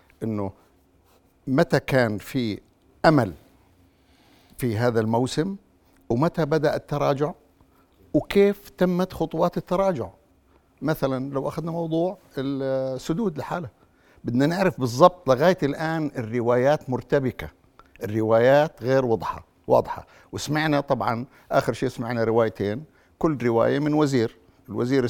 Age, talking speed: 60-79, 105 wpm